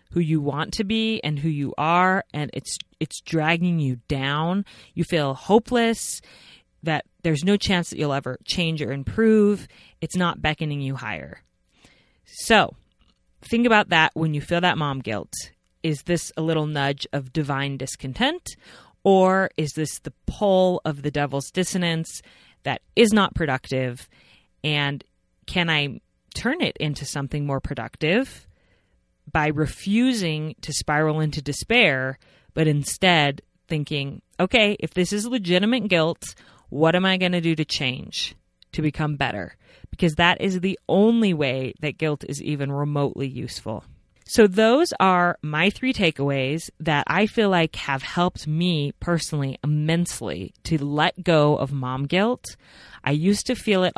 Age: 30-49